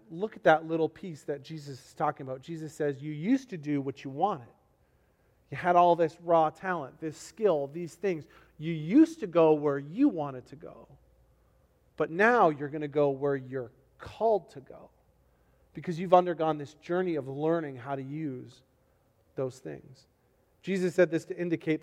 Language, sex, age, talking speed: English, male, 40-59, 180 wpm